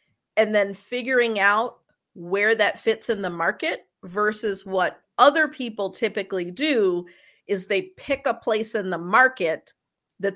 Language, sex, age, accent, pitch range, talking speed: English, female, 40-59, American, 175-215 Hz, 145 wpm